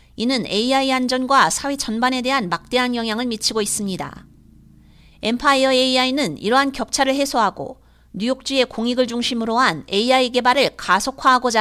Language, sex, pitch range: Korean, female, 195-265 Hz